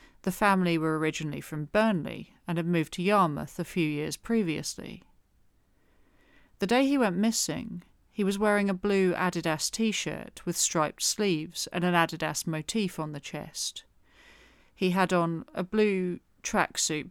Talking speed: 150 wpm